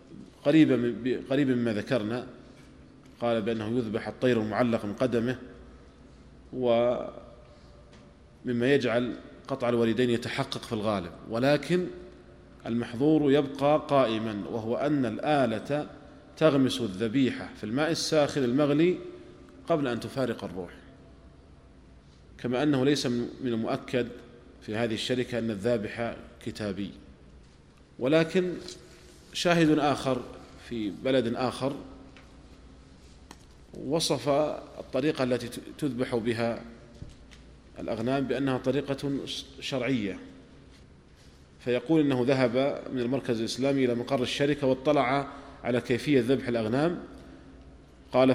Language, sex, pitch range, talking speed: Arabic, male, 115-135 Hz, 95 wpm